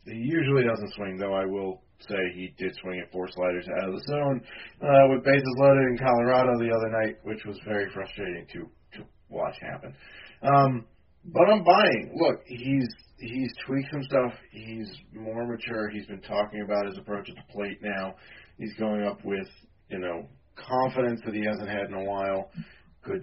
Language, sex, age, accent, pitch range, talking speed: English, male, 30-49, American, 105-135 Hz, 190 wpm